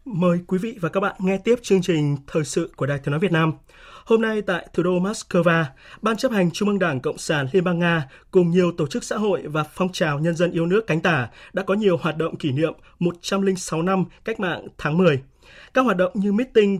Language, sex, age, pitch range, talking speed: Vietnamese, male, 20-39, 155-195 Hz, 245 wpm